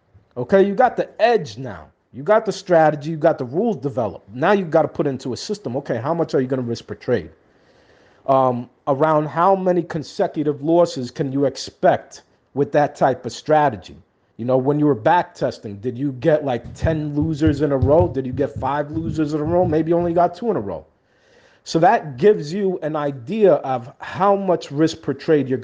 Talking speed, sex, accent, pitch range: 215 wpm, male, American, 135-175 Hz